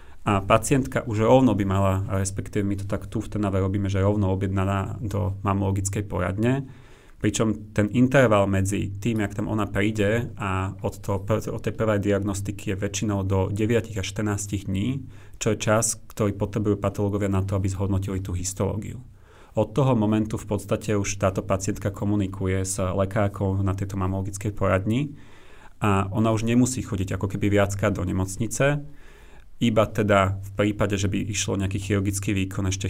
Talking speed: 165 wpm